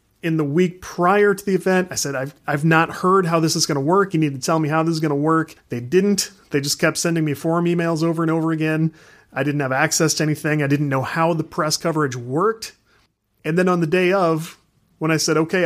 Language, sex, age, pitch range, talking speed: English, male, 30-49, 145-170 Hz, 255 wpm